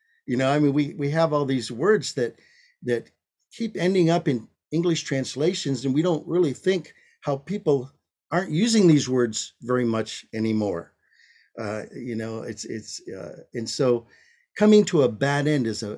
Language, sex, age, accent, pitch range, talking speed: English, male, 50-69, American, 110-165 Hz, 175 wpm